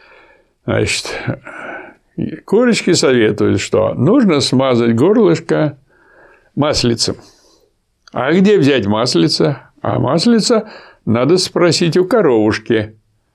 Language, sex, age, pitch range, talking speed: Russian, male, 60-79, 115-185 Hz, 80 wpm